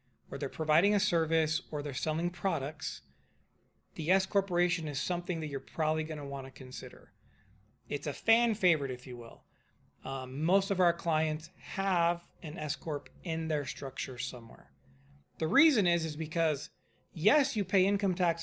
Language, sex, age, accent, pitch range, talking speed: English, male, 40-59, American, 135-185 Hz, 165 wpm